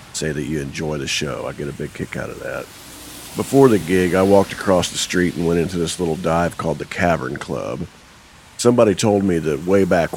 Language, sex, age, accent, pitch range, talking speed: English, male, 50-69, American, 85-105 Hz, 225 wpm